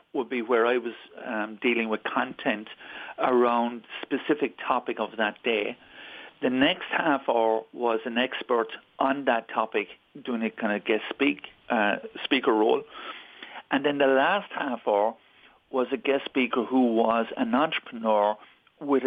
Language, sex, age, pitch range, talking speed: English, male, 50-69, 115-140 Hz, 150 wpm